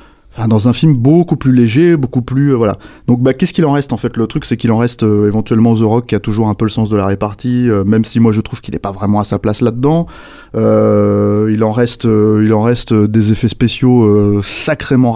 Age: 20-39